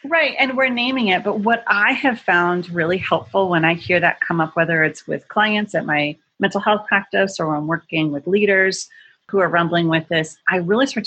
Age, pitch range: 30-49, 155-200 Hz